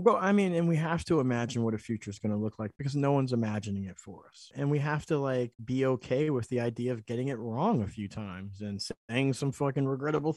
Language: English